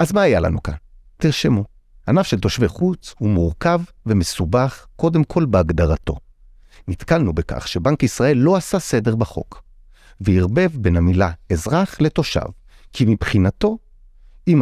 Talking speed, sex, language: 130 wpm, male, Hebrew